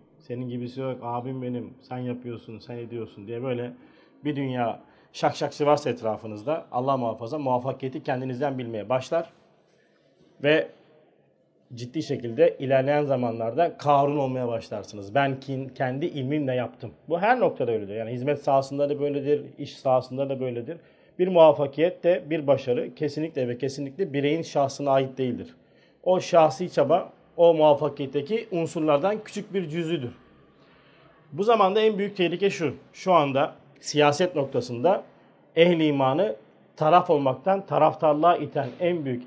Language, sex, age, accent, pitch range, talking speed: Turkish, male, 40-59, native, 125-155 Hz, 135 wpm